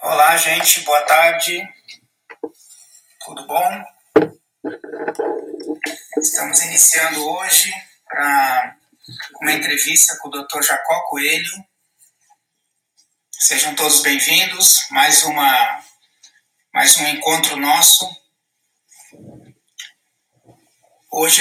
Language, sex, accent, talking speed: Portuguese, male, Brazilian, 70 wpm